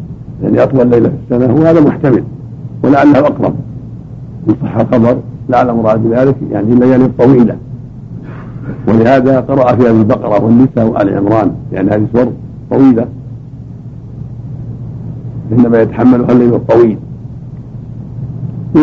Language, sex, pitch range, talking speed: Arabic, male, 115-130 Hz, 110 wpm